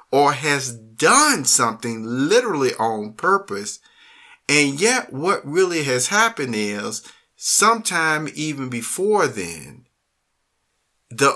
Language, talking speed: English, 100 wpm